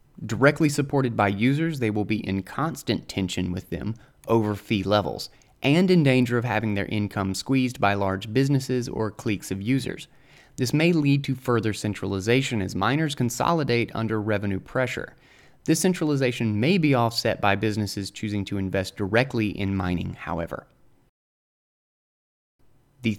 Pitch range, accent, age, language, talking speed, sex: 100-135 Hz, American, 30-49, English, 145 wpm, male